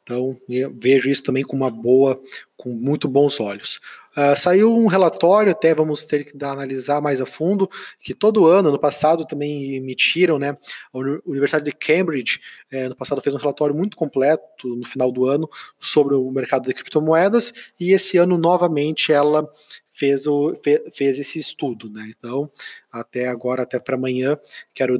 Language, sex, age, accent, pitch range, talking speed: Portuguese, male, 20-39, Brazilian, 130-155 Hz, 170 wpm